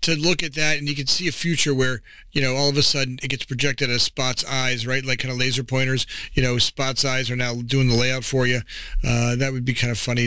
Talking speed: 275 wpm